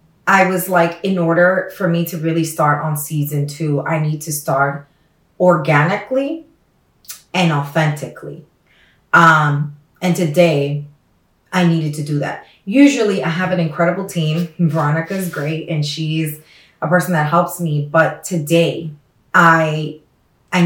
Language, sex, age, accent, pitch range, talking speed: English, female, 30-49, American, 145-175 Hz, 140 wpm